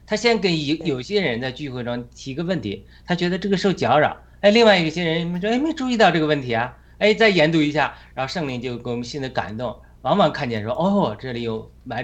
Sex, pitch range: male, 130-160 Hz